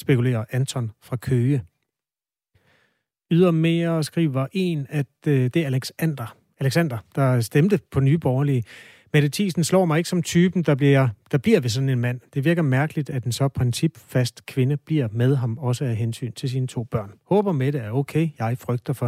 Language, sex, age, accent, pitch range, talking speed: Danish, male, 30-49, native, 120-150 Hz, 175 wpm